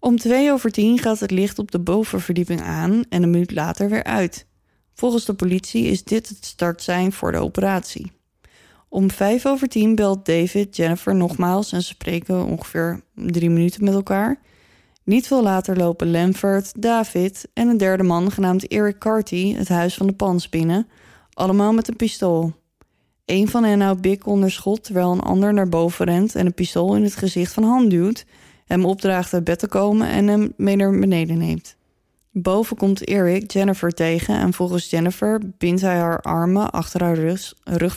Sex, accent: female, Dutch